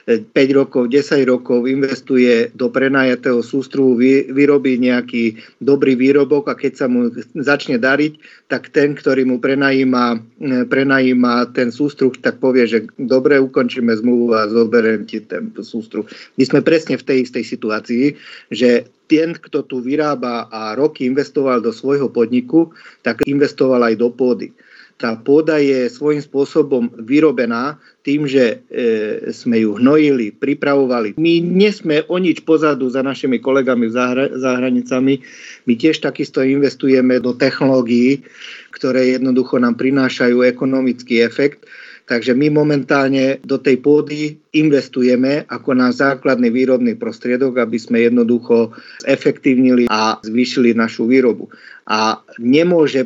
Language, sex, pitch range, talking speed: Slovak, male, 120-145 Hz, 135 wpm